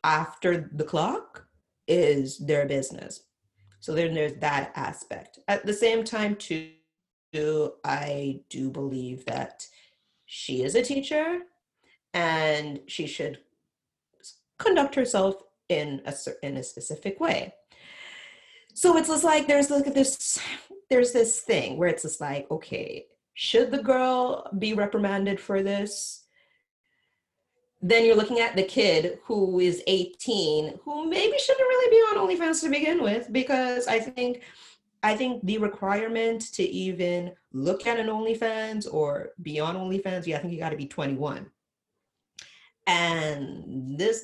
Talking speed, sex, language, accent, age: 140 wpm, female, English, American, 30-49